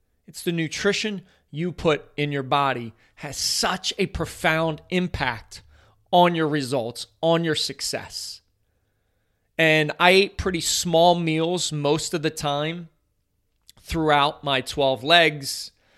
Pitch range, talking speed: 130-165 Hz, 125 wpm